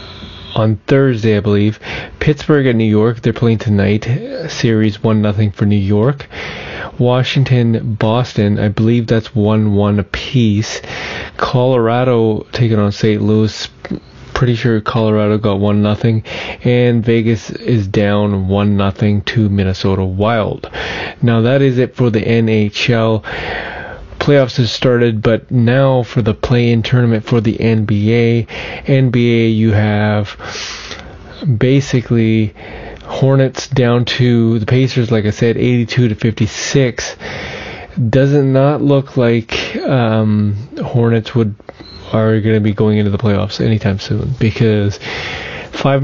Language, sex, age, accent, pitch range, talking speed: English, male, 30-49, American, 105-125 Hz, 125 wpm